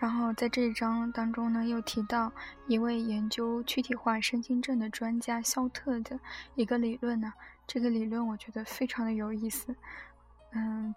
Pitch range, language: 220-250 Hz, Chinese